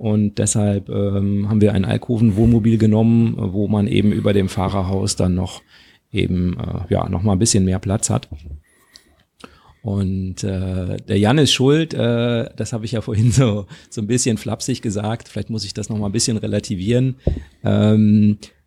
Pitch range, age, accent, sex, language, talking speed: 100-120 Hz, 40-59, German, male, German, 170 wpm